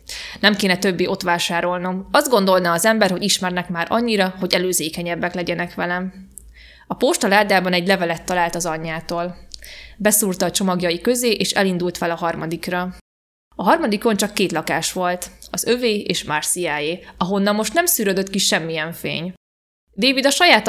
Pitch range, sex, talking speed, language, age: 180-215 Hz, female, 160 wpm, Hungarian, 20-39